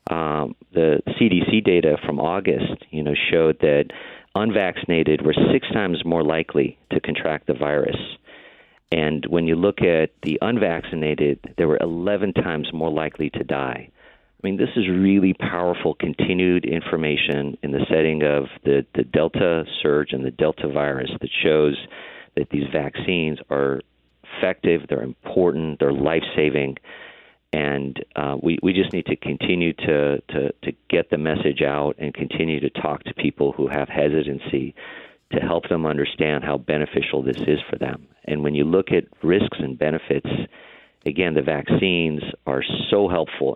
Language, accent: English, American